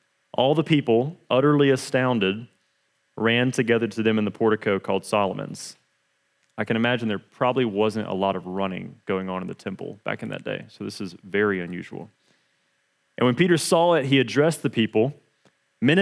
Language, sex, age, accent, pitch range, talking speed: English, male, 30-49, American, 115-155 Hz, 180 wpm